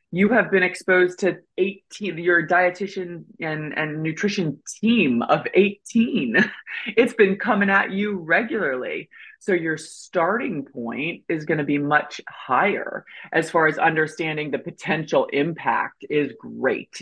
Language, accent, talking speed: English, American, 140 wpm